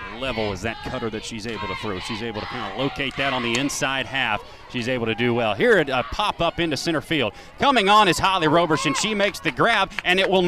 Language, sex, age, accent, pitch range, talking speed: English, male, 30-49, American, 135-200 Hz, 250 wpm